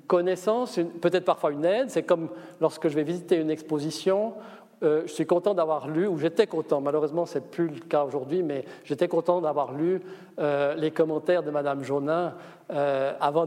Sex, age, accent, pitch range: male, 50-69, French, 155-190 Hz